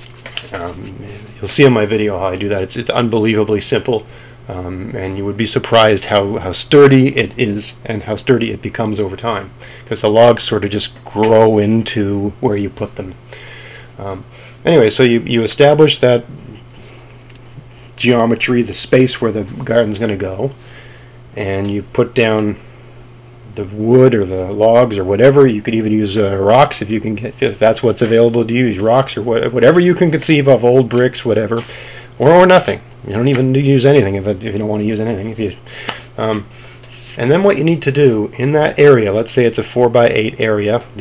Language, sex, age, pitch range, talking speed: English, male, 40-59, 105-125 Hz, 205 wpm